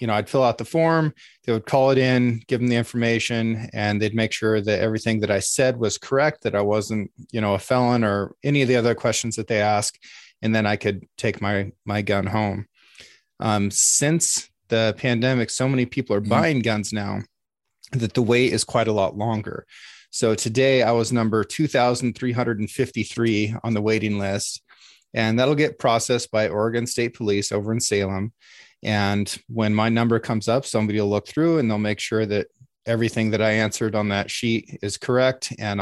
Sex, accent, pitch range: male, American, 105-125 Hz